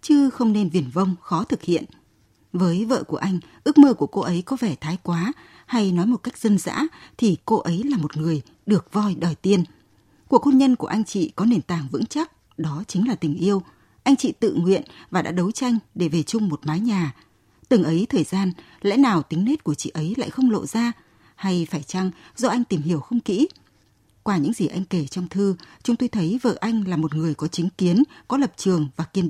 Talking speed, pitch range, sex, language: 235 wpm, 160-230 Hz, female, Vietnamese